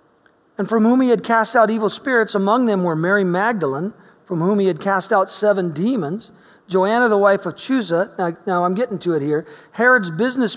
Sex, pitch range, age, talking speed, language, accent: male, 185-235 Hz, 40-59, 205 wpm, English, American